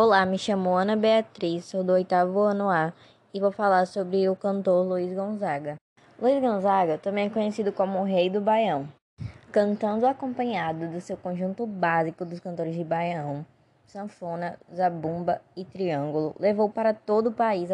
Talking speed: 160 wpm